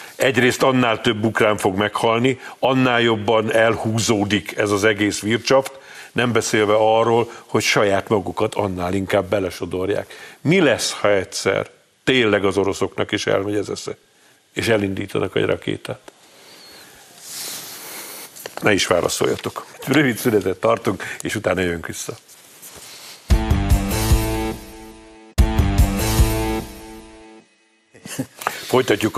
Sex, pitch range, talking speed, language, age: male, 105-115 Hz, 100 wpm, Hungarian, 50-69